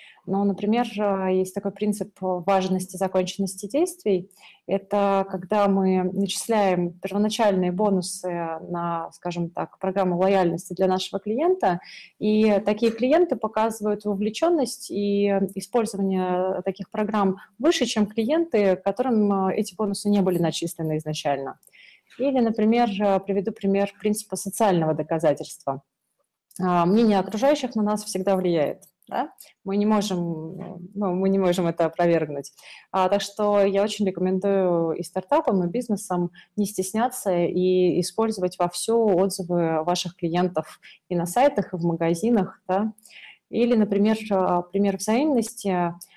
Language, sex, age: Russian, female, 30-49